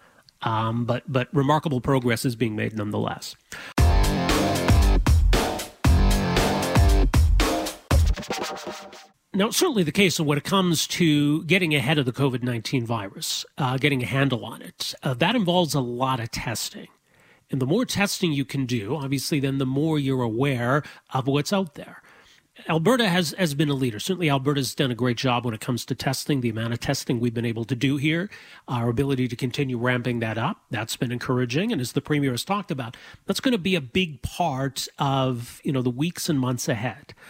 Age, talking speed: 40-59, 185 wpm